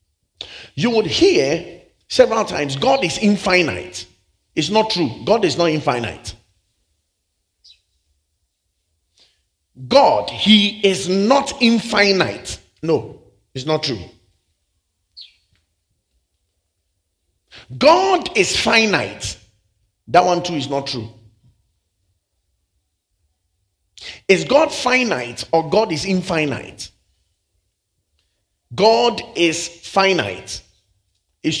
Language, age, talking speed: English, 50-69, 85 wpm